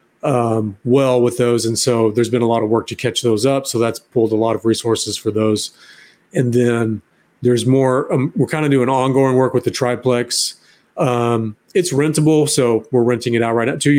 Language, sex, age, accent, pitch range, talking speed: English, male, 30-49, American, 115-135 Hz, 215 wpm